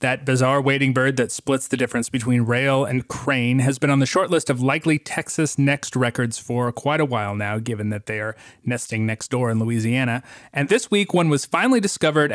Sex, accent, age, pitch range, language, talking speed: male, American, 30-49, 120-155 Hz, English, 215 wpm